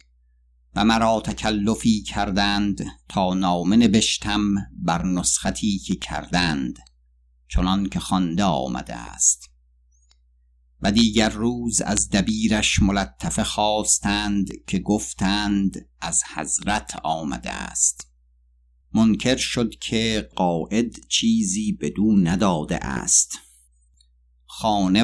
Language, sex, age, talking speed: Persian, male, 50-69, 90 wpm